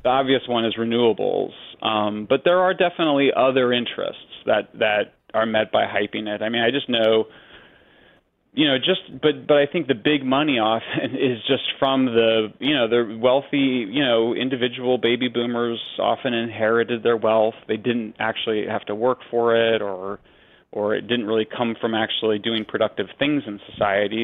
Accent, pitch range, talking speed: American, 110-130 Hz, 180 wpm